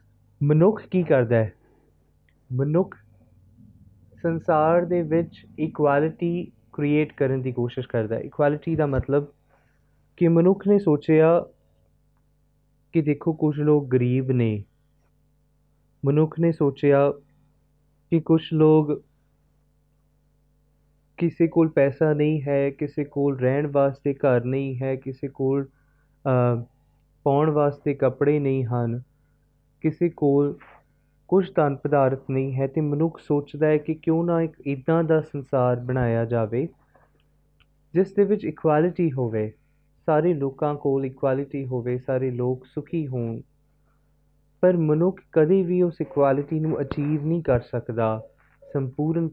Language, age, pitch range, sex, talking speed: Punjabi, 20-39, 130-160 Hz, male, 120 wpm